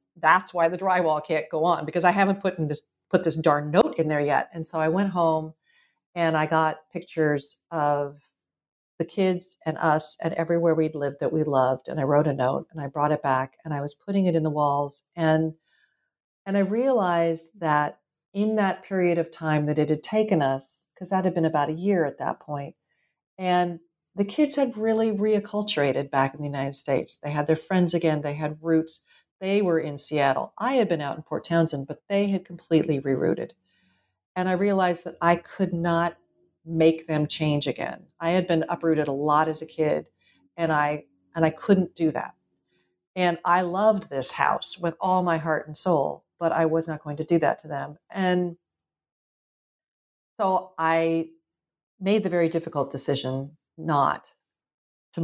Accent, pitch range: American, 150-180 Hz